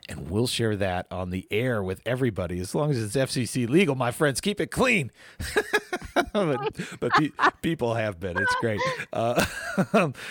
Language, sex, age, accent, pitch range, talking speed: English, male, 40-59, American, 110-175 Hz, 175 wpm